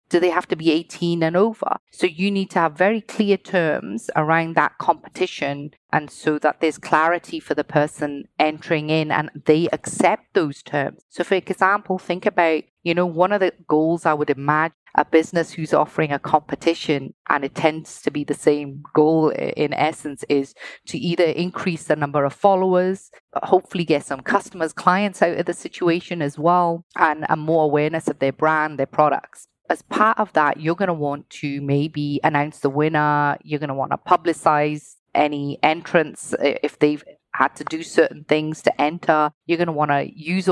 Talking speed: 190 wpm